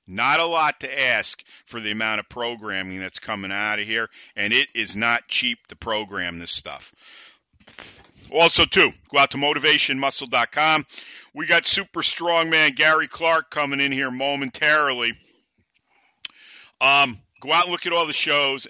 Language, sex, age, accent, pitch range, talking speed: English, male, 50-69, American, 115-145 Hz, 160 wpm